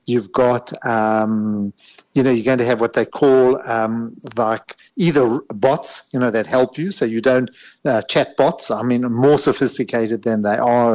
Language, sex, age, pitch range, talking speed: English, male, 50-69, 115-140 Hz, 185 wpm